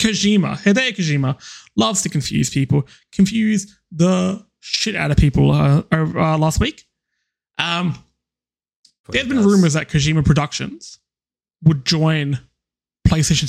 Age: 20-39